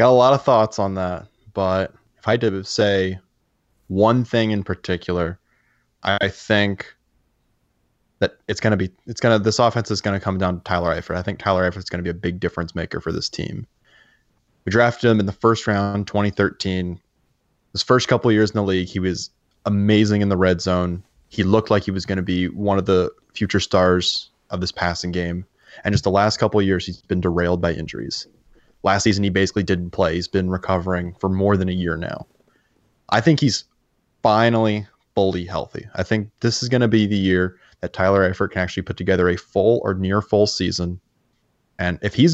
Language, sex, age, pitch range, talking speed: English, male, 20-39, 90-105 Hz, 210 wpm